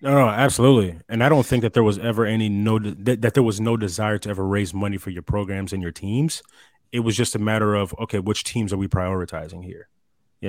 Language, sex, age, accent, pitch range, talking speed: English, male, 20-39, American, 100-120 Hz, 245 wpm